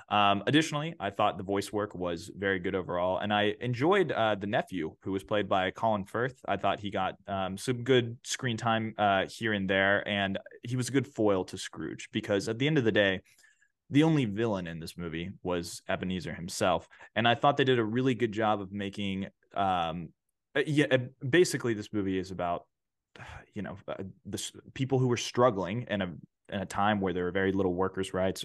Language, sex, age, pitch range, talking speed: English, male, 20-39, 95-120 Hz, 205 wpm